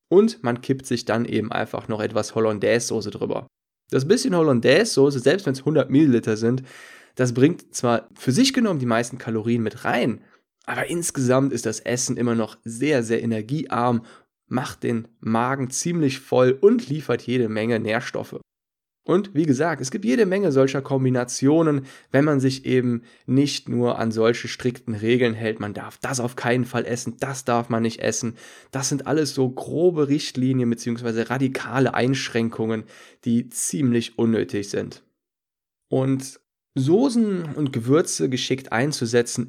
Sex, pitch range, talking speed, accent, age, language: male, 115-135 Hz, 155 wpm, German, 10-29, German